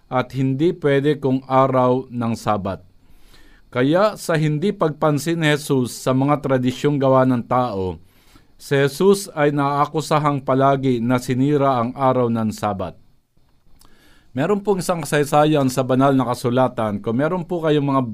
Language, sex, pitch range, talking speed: Filipino, male, 125-155 Hz, 140 wpm